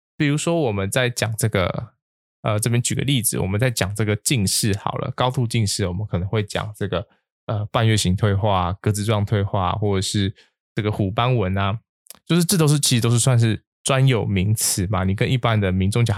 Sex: male